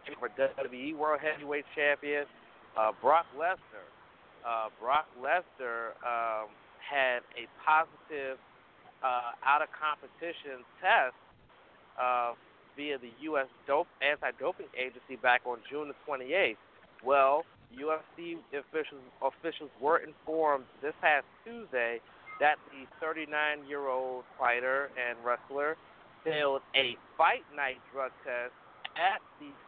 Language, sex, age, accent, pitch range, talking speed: English, male, 40-59, American, 120-150 Hz, 115 wpm